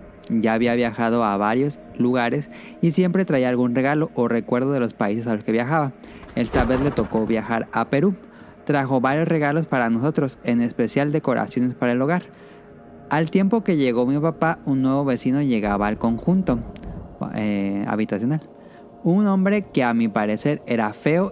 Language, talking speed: Spanish, 170 wpm